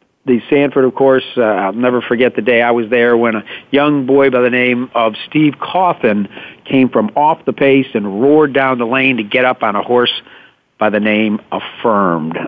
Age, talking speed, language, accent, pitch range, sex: 50-69, 205 wpm, English, American, 115-140 Hz, male